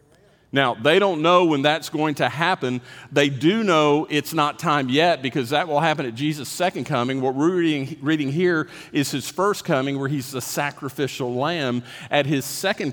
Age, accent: 50-69, American